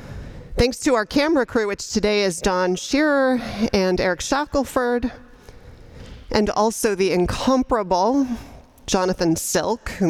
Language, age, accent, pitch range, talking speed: English, 30-49, American, 175-220 Hz, 120 wpm